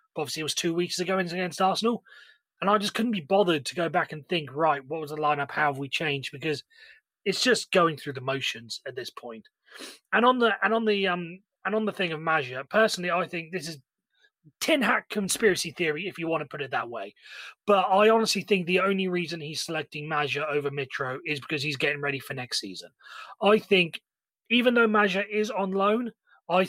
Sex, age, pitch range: male, 30-49, 145-190 Hz